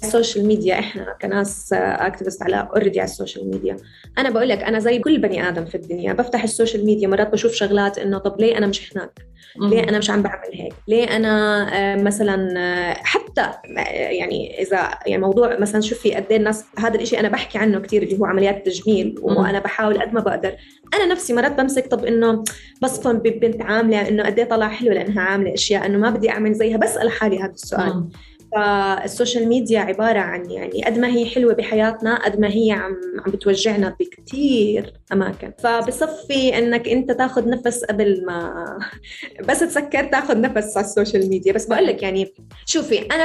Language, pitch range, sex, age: Arabic, 200-235 Hz, female, 20-39